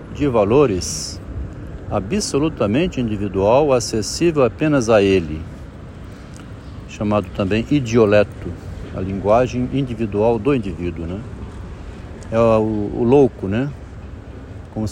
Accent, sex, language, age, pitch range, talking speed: Brazilian, male, Portuguese, 60-79, 95-120 Hz, 95 wpm